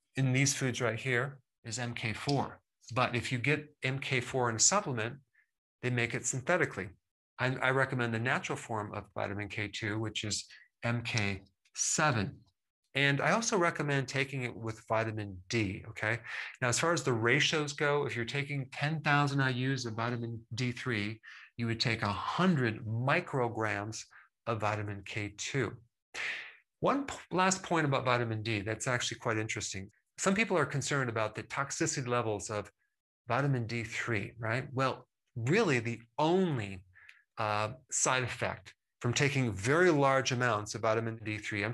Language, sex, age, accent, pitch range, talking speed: English, male, 40-59, American, 110-140 Hz, 145 wpm